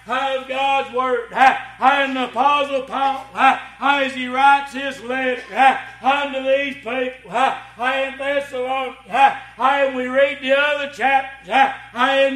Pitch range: 265-295 Hz